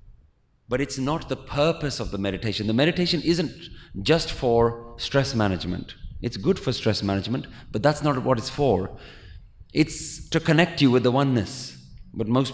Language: English